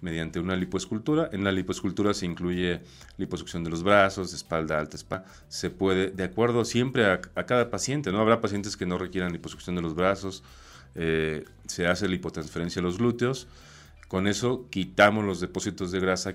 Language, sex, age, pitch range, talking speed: Spanish, male, 40-59, 85-105 Hz, 175 wpm